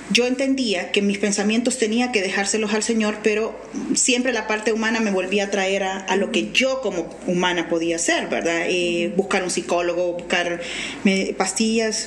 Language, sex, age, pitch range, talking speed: Spanish, female, 30-49, 195-240 Hz, 180 wpm